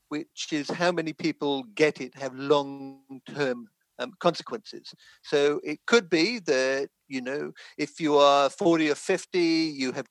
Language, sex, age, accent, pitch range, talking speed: English, male, 50-69, British, 140-190 Hz, 150 wpm